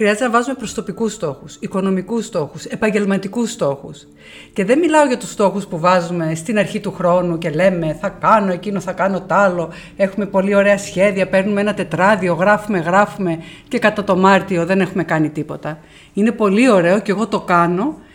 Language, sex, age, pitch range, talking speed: Greek, female, 50-69, 185-235 Hz, 180 wpm